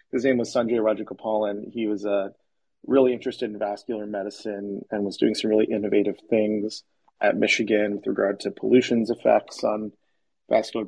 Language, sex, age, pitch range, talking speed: English, male, 40-59, 100-115 Hz, 160 wpm